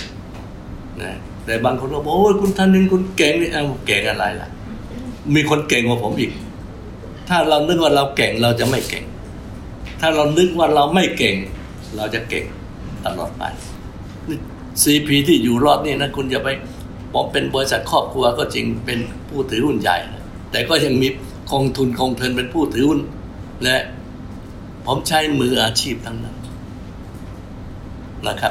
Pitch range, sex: 95-130 Hz, male